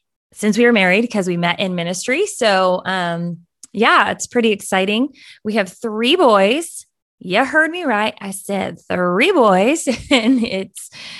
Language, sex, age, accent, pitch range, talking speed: English, female, 20-39, American, 180-250 Hz, 155 wpm